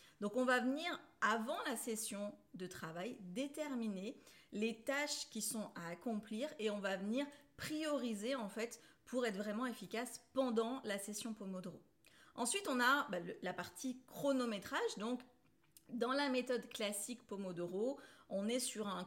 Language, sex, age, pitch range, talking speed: French, female, 30-49, 205-265 Hz, 150 wpm